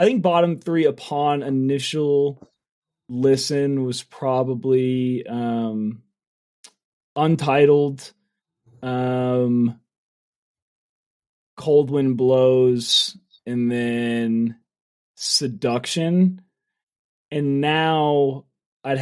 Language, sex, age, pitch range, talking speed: English, male, 20-39, 130-170 Hz, 65 wpm